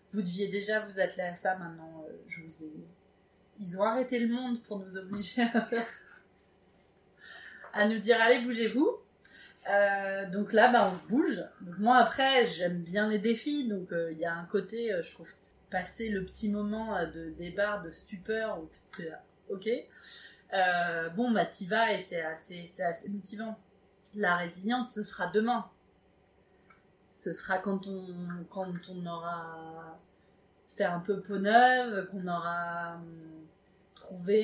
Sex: female